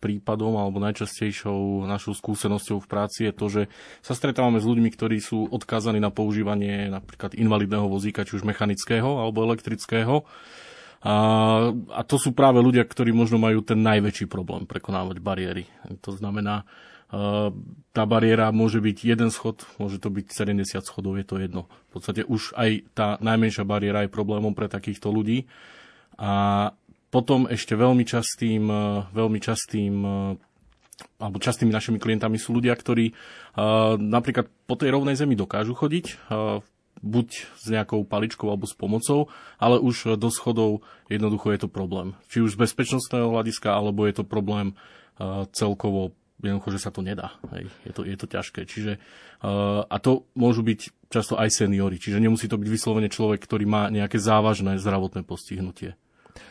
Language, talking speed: Slovak, 160 wpm